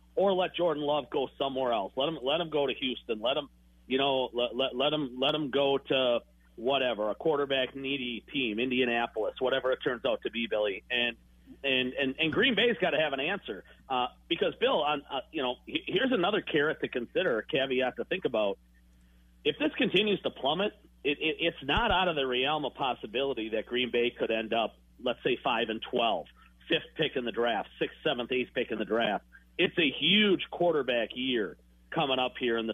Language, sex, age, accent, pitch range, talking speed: English, male, 50-69, American, 115-145 Hz, 210 wpm